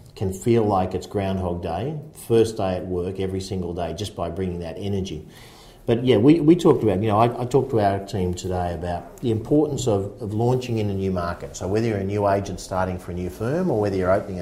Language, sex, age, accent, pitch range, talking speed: English, male, 50-69, Australian, 90-120 Hz, 240 wpm